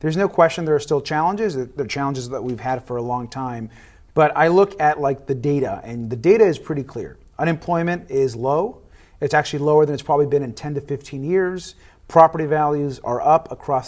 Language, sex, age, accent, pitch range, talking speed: English, male, 30-49, American, 130-155 Hz, 210 wpm